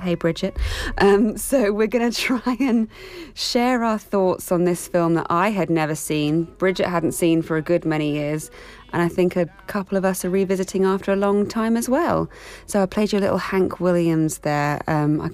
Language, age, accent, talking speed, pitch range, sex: English, 20-39, British, 205 wpm, 155-190 Hz, female